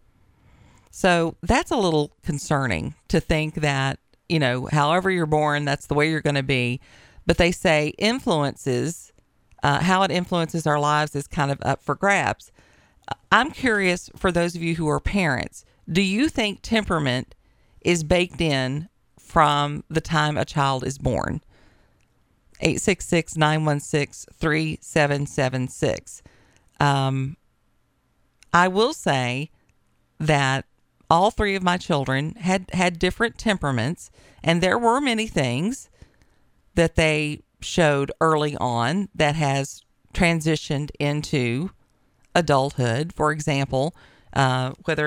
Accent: American